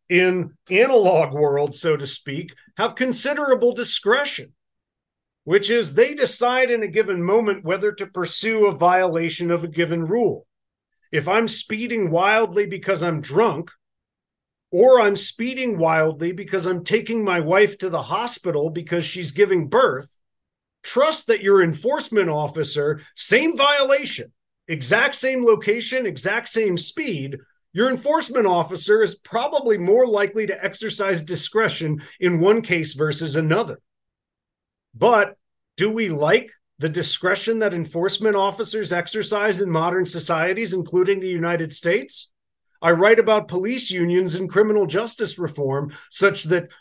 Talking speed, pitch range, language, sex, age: 135 wpm, 170-220 Hz, English, male, 40-59